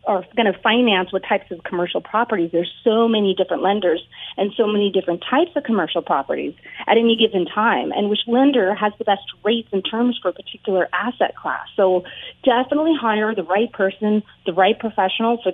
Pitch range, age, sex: 195-240 Hz, 30-49, female